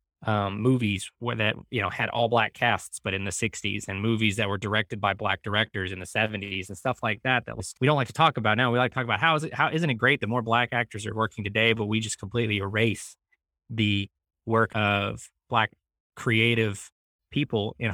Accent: American